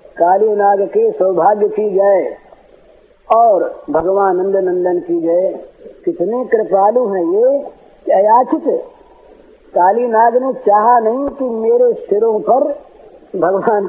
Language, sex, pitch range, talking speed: Hindi, female, 185-300 Hz, 110 wpm